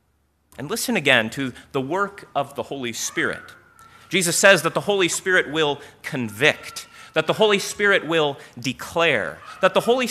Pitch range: 130-180 Hz